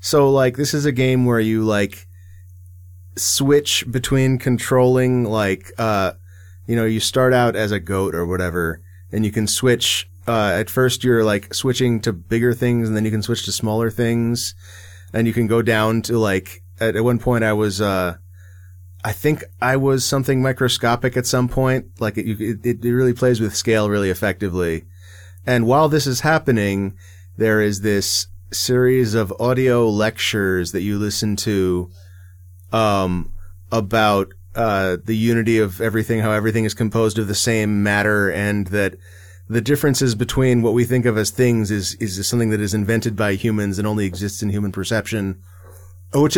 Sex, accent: male, American